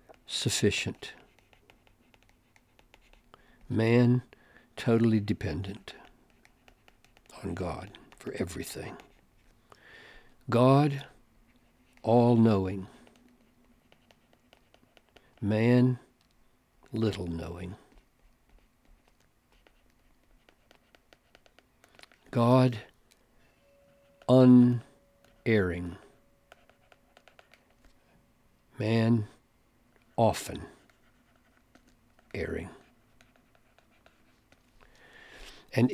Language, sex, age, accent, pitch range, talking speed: English, male, 60-79, American, 110-140 Hz, 30 wpm